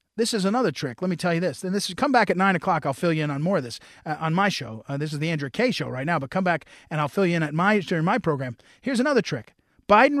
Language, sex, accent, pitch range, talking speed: English, male, American, 160-215 Hz, 325 wpm